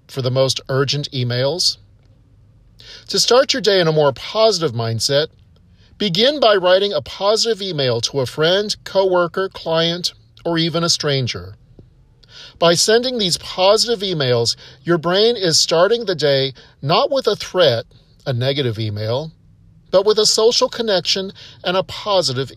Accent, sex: American, male